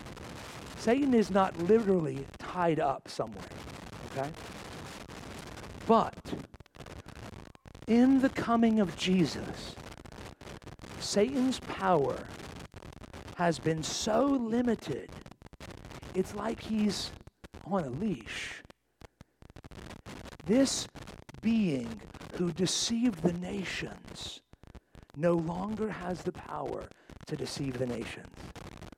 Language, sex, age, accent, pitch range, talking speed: English, male, 50-69, American, 140-205 Hz, 85 wpm